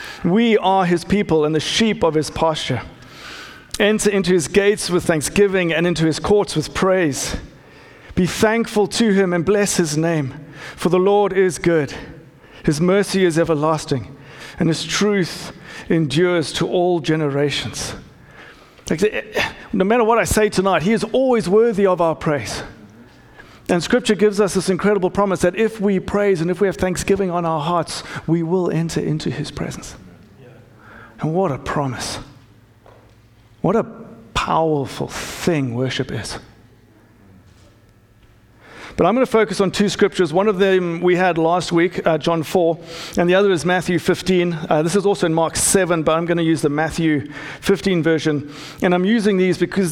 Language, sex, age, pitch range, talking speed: English, male, 50-69, 145-190 Hz, 165 wpm